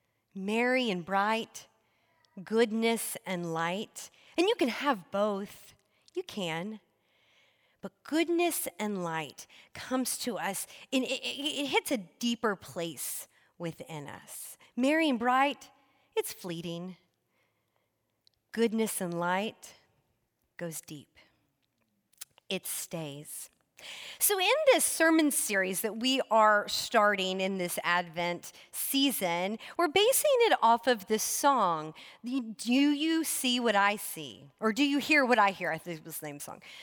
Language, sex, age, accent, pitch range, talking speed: English, female, 40-59, American, 185-270 Hz, 135 wpm